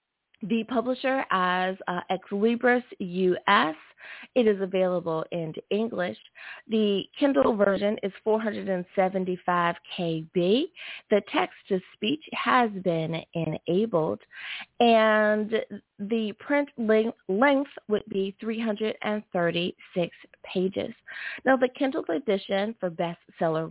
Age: 30-49